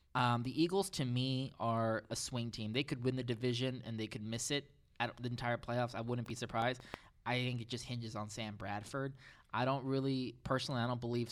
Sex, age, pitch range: male, 20-39, 110-135 Hz